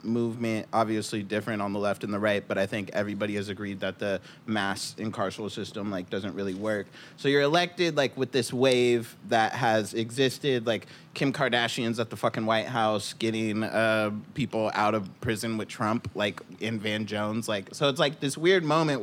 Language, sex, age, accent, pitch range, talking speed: English, male, 20-39, American, 110-135 Hz, 190 wpm